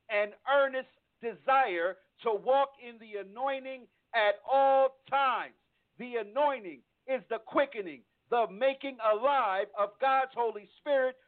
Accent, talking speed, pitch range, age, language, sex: American, 120 wpm, 235-275 Hz, 50-69, English, male